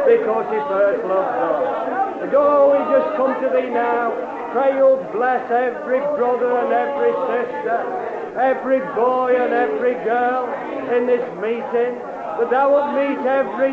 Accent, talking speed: British, 150 wpm